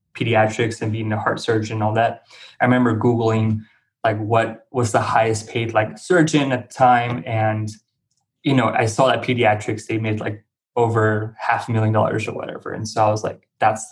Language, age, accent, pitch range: English, 20-39, American, 110-125 Hz